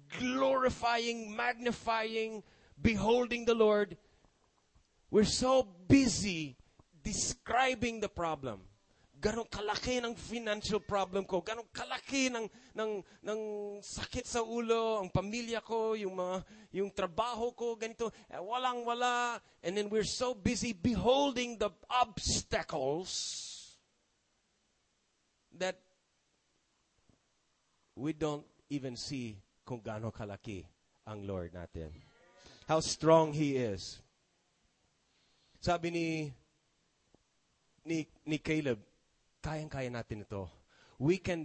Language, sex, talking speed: English, male, 95 wpm